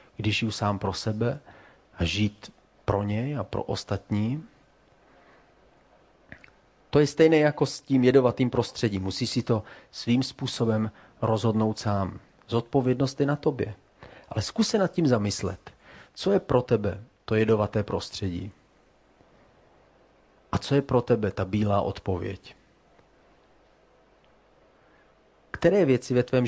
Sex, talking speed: male, 125 wpm